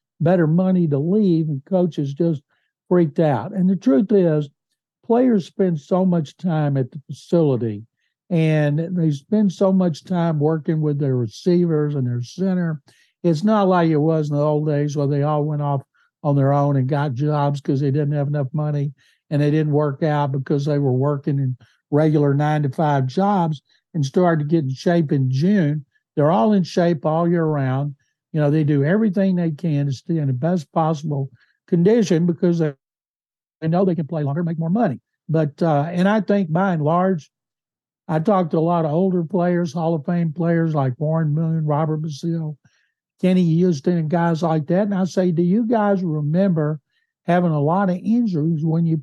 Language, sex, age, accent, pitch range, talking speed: English, male, 60-79, American, 145-180 Hz, 195 wpm